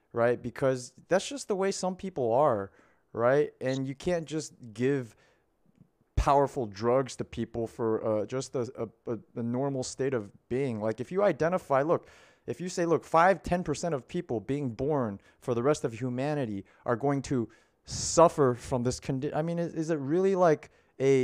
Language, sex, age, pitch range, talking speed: English, male, 30-49, 120-150 Hz, 180 wpm